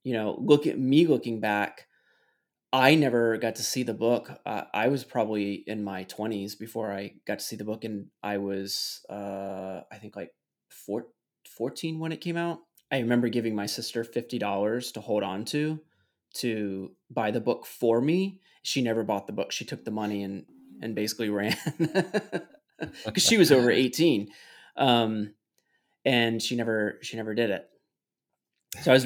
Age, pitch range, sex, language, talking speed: 20-39, 110-130 Hz, male, English, 180 wpm